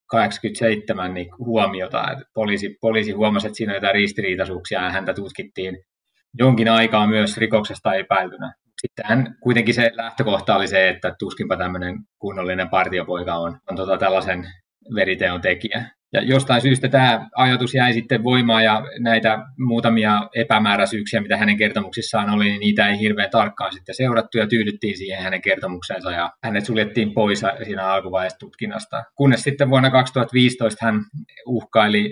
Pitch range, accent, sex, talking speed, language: 95-115 Hz, native, male, 145 wpm, Finnish